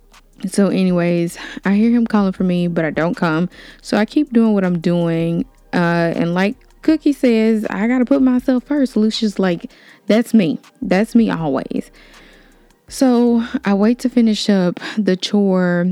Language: English